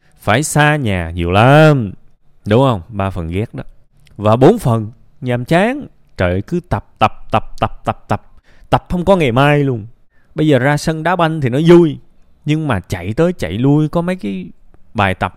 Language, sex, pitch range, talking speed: Vietnamese, male, 110-170 Hz, 195 wpm